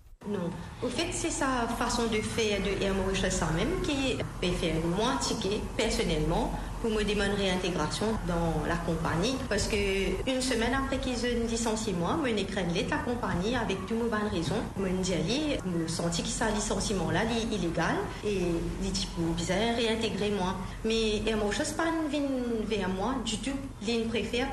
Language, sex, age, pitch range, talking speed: English, female, 40-59, 185-245 Hz, 165 wpm